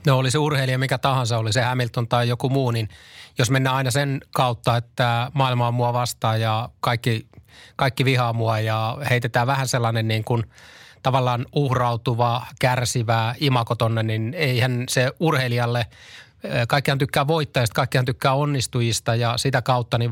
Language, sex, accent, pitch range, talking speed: Finnish, male, native, 115-130 Hz, 155 wpm